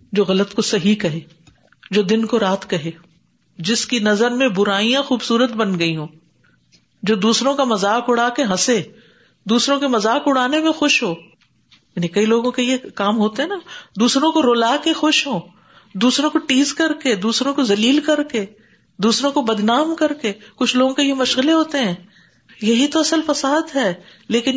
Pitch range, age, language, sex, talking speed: 195-265 Hz, 50-69, Urdu, female, 175 wpm